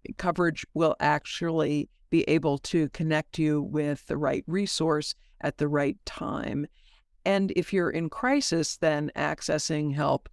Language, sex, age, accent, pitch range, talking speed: English, female, 60-79, American, 150-170 Hz, 140 wpm